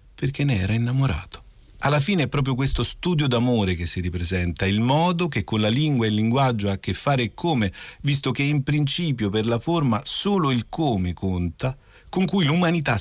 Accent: native